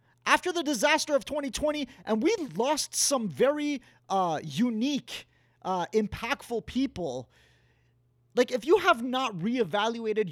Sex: male